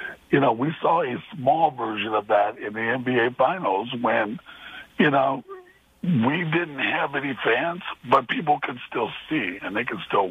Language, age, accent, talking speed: English, 60-79, American, 175 wpm